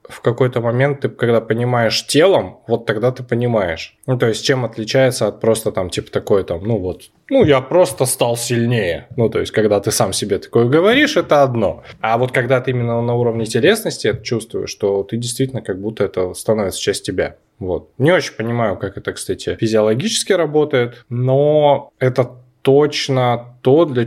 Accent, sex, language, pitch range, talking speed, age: native, male, Russian, 110-135 Hz, 180 wpm, 10-29